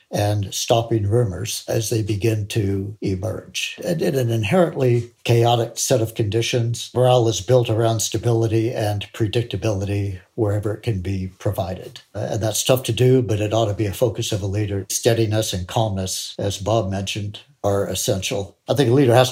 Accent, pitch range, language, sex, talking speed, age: American, 100-120 Hz, English, male, 170 wpm, 60-79